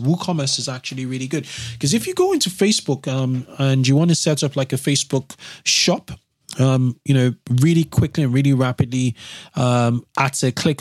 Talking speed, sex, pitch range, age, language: 190 wpm, male, 125-150 Hz, 20-39, English